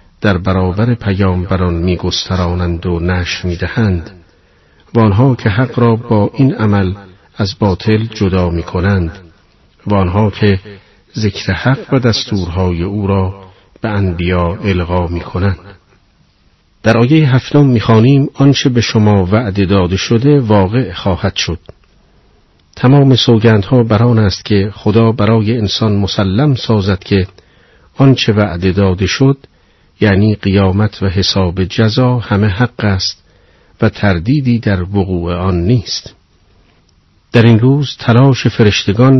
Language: Persian